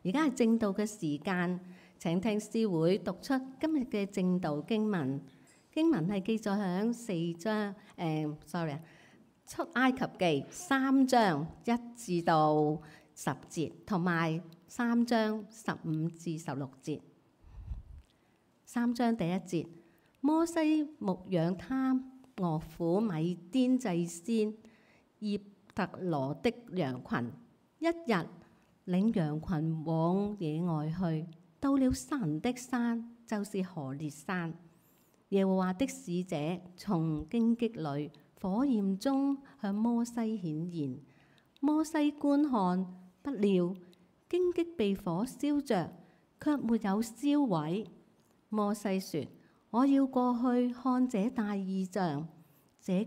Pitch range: 170-240 Hz